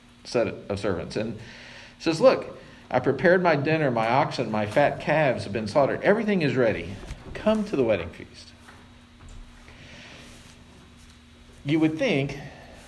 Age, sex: 50-69, male